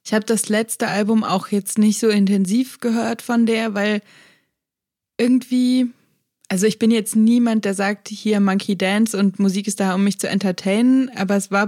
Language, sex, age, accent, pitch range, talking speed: German, female, 20-39, German, 195-225 Hz, 185 wpm